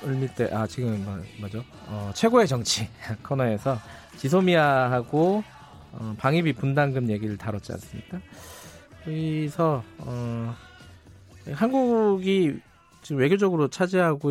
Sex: male